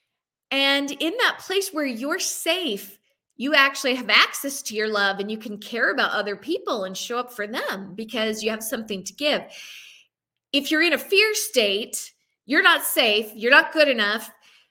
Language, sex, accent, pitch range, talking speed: English, female, American, 230-335 Hz, 185 wpm